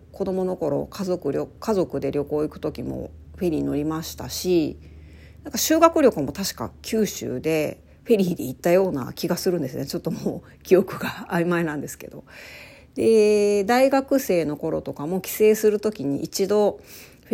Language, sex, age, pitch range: Japanese, female, 40-59, 155-220 Hz